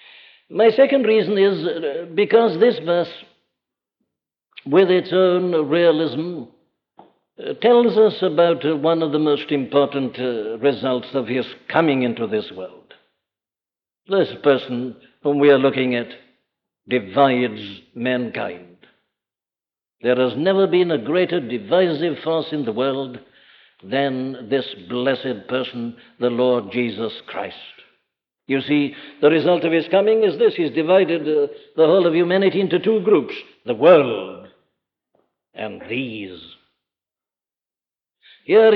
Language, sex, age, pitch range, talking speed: English, male, 60-79, 135-195 Hz, 120 wpm